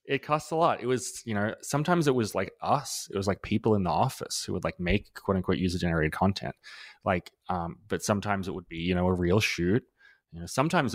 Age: 20-39